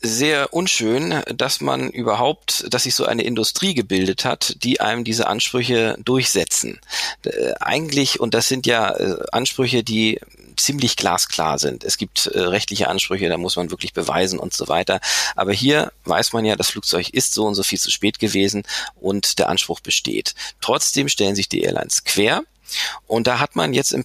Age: 40-59